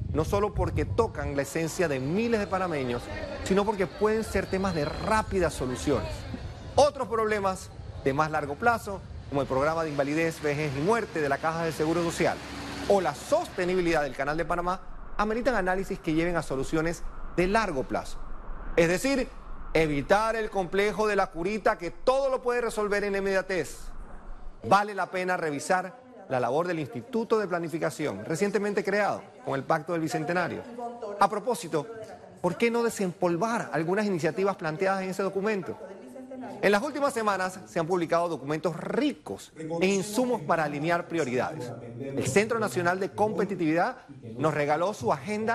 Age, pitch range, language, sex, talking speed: 40-59, 160-215 Hz, Spanish, male, 160 wpm